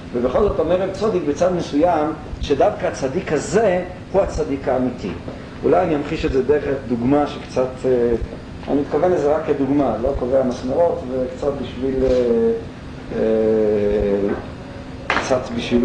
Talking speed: 115 wpm